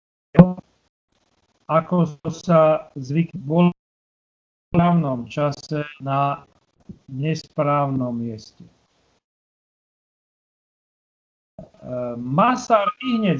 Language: Slovak